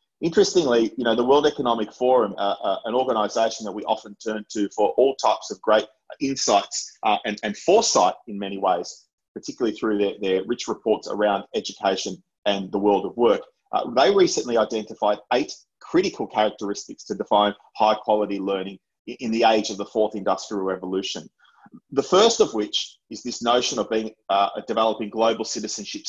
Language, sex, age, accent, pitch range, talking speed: English, male, 30-49, Australian, 105-130 Hz, 175 wpm